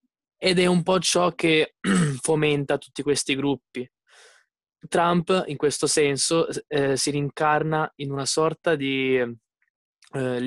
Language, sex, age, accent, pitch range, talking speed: Italian, male, 20-39, native, 130-150 Hz, 125 wpm